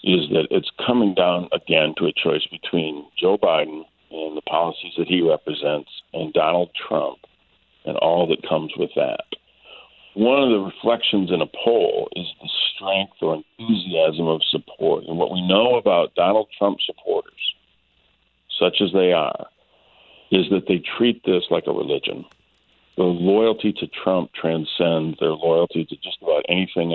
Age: 50-69